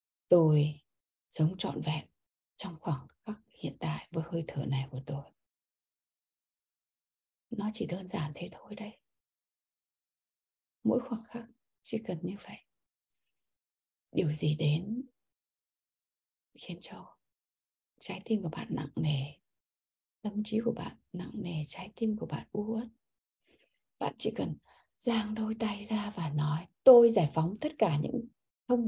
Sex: female